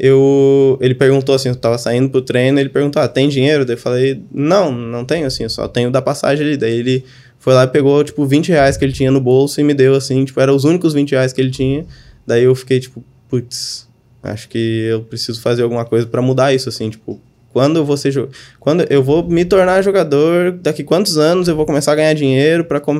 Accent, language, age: Brazilian, Portuguese, 20-39